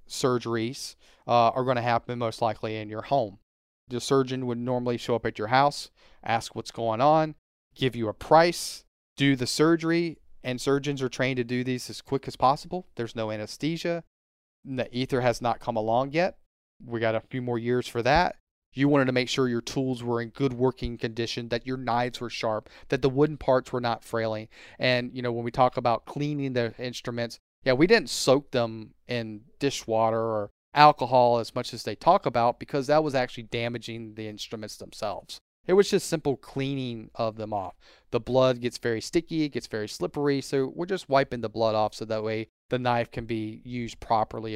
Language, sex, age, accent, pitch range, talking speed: English, male, 30-49, American, 110-130 Hz, 200 wpm